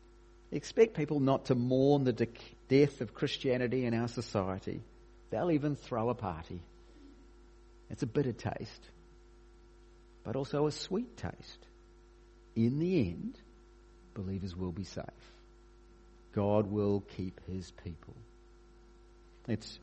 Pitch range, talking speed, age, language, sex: 95-120 Hz, 120 wpm, 50-69, English, male